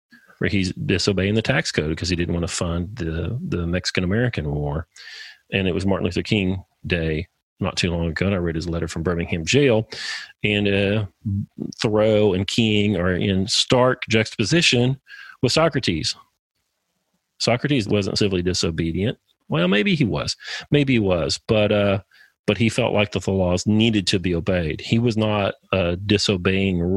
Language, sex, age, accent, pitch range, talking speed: English, male, 40-59, American, 90-110 Hz, 165 wpm